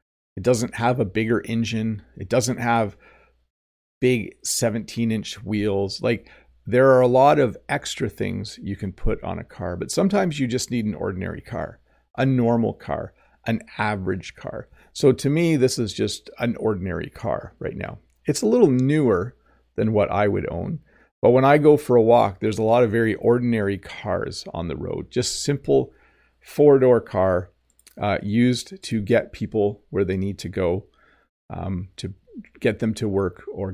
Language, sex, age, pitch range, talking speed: English, male, 50-69, 100-125 Hz, 175 wpm